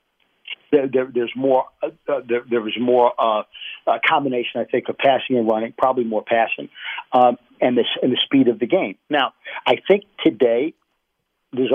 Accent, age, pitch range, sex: American, 50-69, 125-155 Hz, male